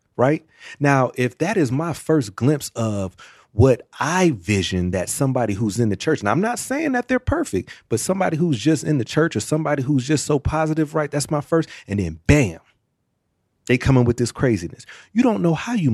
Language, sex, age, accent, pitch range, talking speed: English, male, 30-49, American, 110-155 Hz, 210 wpm